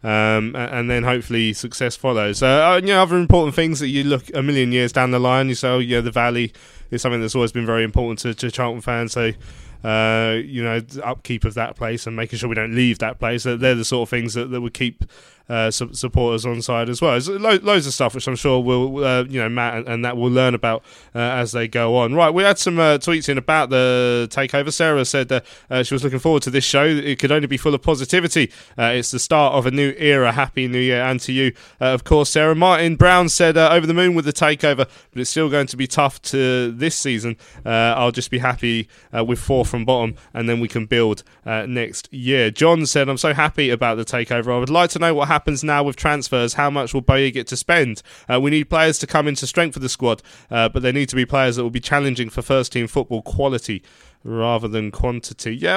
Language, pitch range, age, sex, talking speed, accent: English, 120-145 Hz, 20-39, male, 250 wpm, British